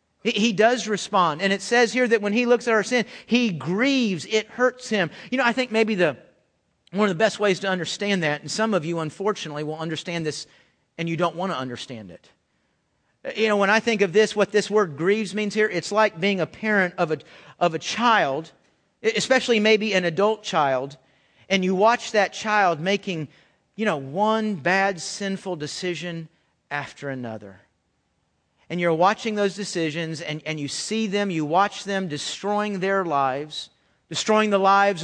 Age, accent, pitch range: 40-59, American, 170-220 Hz